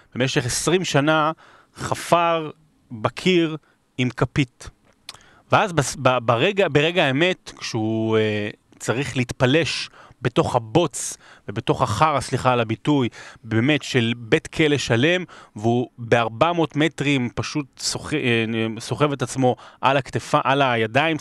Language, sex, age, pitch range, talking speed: Hebrew, male, 30-49, 120-150 Hz, 110 wpm